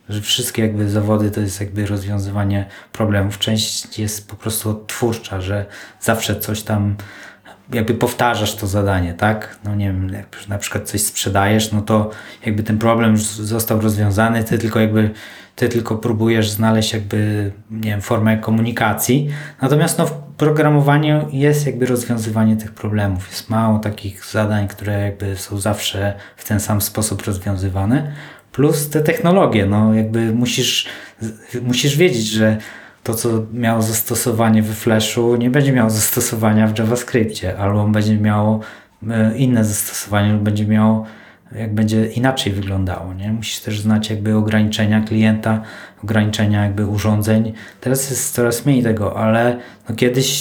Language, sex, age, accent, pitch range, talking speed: Polish, male, 20-39, native, 105-120 Hz, 145 wpm